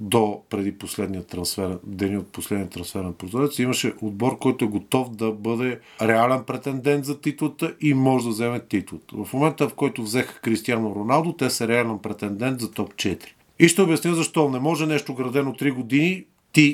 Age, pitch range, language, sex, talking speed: 40-59, 110-135 Hz, Bulgarian, male, 175 wpm